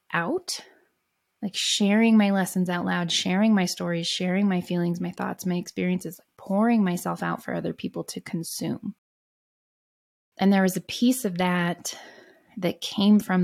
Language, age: English, 20-39